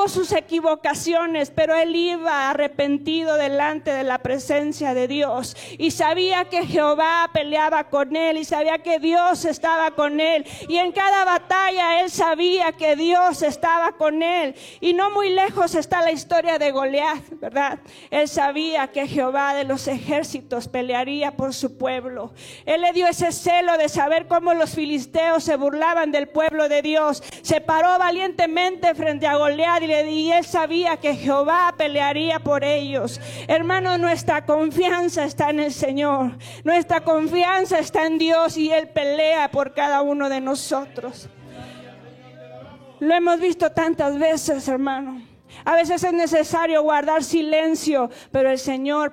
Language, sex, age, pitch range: Spanish, female, 40-59, 280-335 Hz